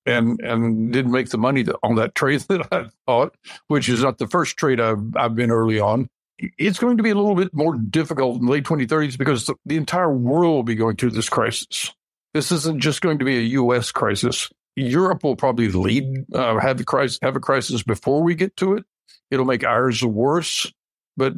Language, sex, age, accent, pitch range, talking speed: English, male, 60-79, American, 125-165 Hz, 215 wpm